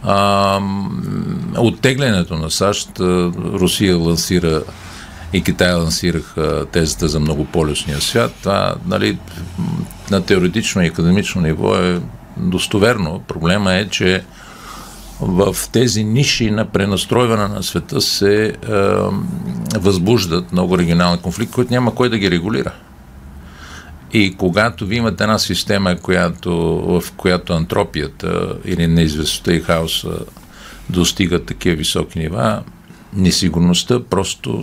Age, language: 50-69, Bulgarian